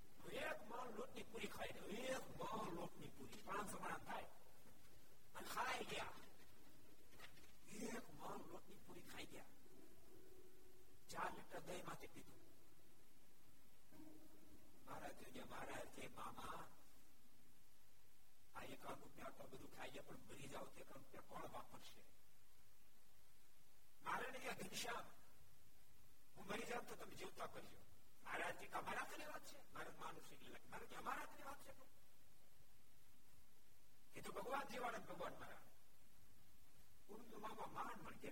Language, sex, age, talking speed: Gujarati, male, 60-79, 45 wpm